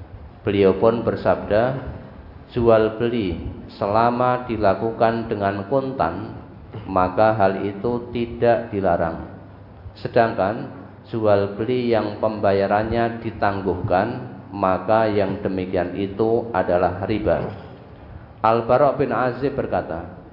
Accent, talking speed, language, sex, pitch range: native, 85 wpm, Indonesian, male, 95-115 Hz